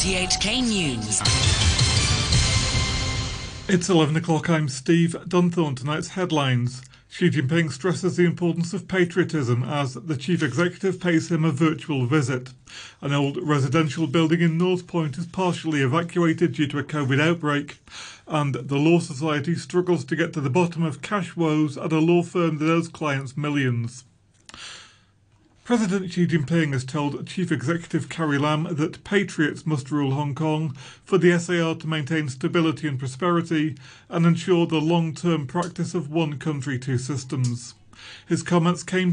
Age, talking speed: 40-59, 150 wpm